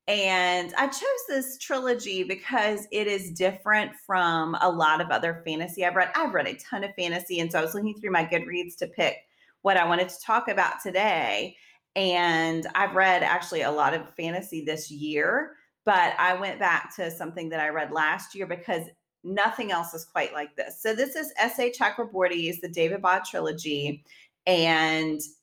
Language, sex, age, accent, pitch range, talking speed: English, female, 30-49, American, 160-195 Hz, 185 wpm